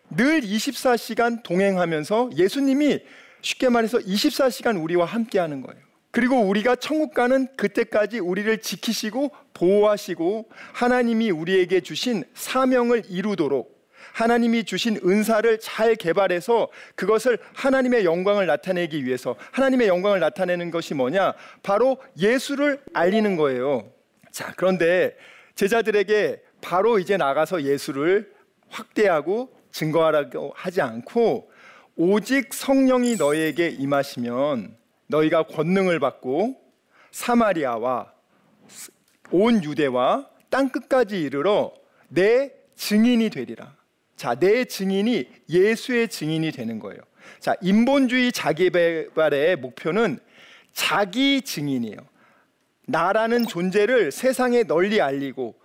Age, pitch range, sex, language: 40-59, 180-255 Hz, male, Korean